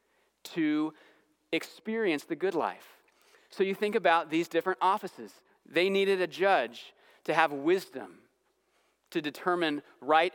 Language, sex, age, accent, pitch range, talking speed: English, male, 30-49, American, 155-210 Hz, 130 wpm